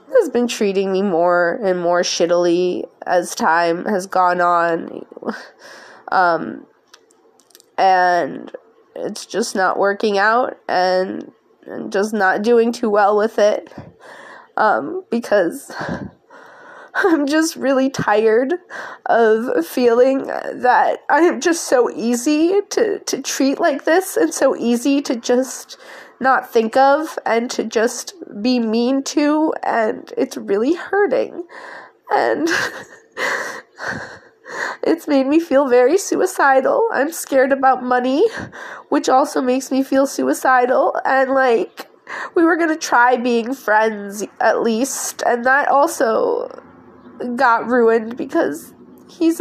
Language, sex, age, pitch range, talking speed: English, female, 20-39, 225-340 Hz, 120 wpm